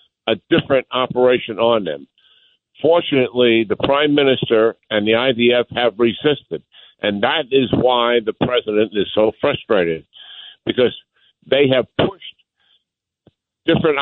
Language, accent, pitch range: English, American, 110-140 Hz